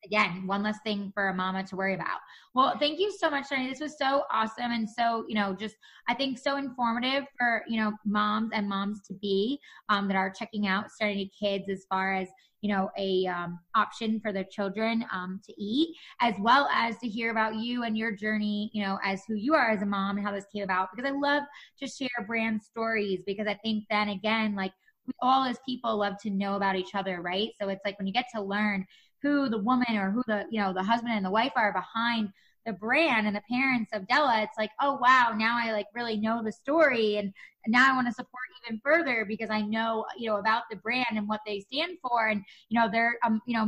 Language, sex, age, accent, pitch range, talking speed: English, female, 20-39, American, 205-235 Hz, 240 wpm